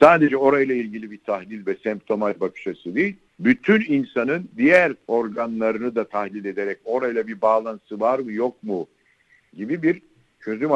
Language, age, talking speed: Turkish, 60-79, 145 wpm